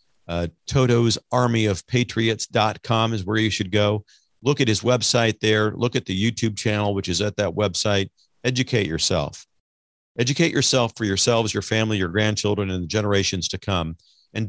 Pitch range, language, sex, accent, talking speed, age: 105-135 Hz, English, male, American, 160 wpm, 50-69